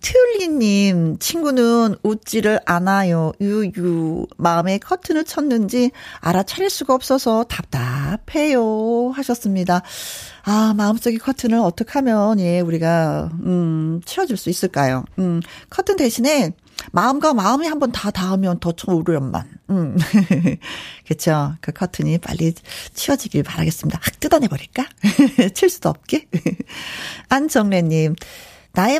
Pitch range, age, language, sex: 175-265 Hz, 40-59, Korean, female